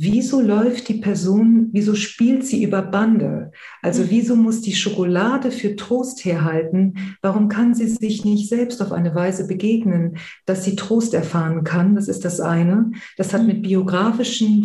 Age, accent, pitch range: 40-59, German, 180-220 Hz